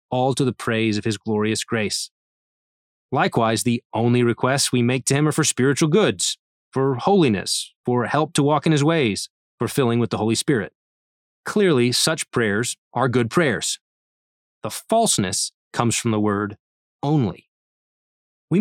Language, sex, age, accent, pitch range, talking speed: English, male, 20-39, American, 110-150 Hz, 160 wpm